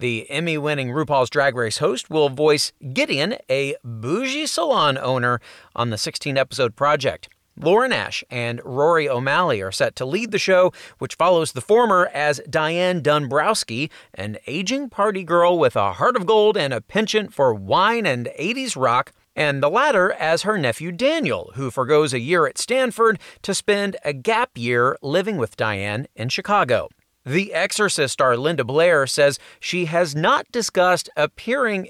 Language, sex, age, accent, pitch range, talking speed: English, male, 40-59, American, 130-185 Hz, 160 wpm